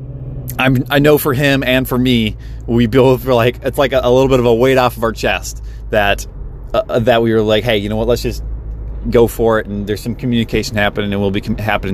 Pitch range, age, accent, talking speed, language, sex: 110-135 Hz, 30-49, American, 250 wpm, English, male